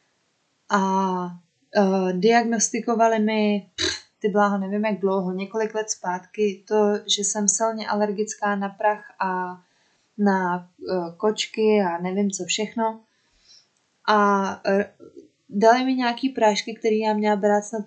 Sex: female